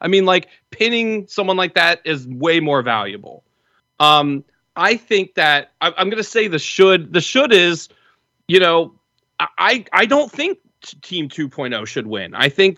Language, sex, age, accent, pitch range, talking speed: English, male, 30-49, American, 130-180 Hz, 180 wpm